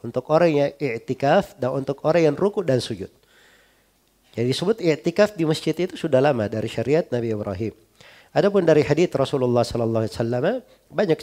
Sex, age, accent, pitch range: male, 40-59, native, 120-150 Hz